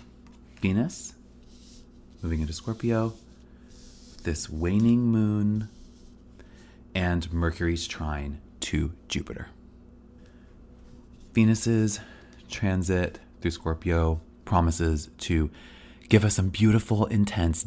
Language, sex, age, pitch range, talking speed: English, male, 30-49, 80-105 Hz, 80 wpm